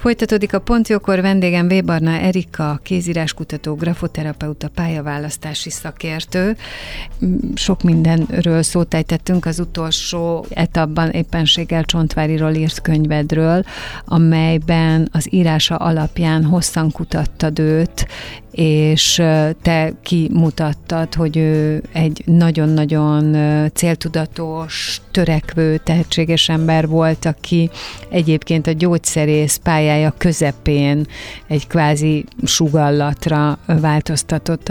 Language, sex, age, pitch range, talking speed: Hungarian, female, 30-49, 155-170 Hz, 85 wpm